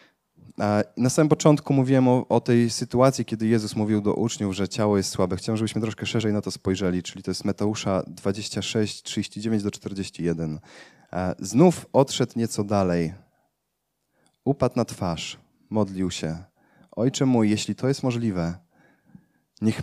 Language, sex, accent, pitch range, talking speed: Polish, male, native, 100-125 Hz, 140 wpm